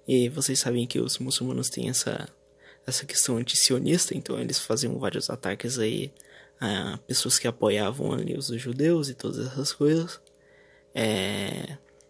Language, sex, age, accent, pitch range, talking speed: Portuguese, male, 20-39, Brazilian, 125-160 Hz, 150 wpm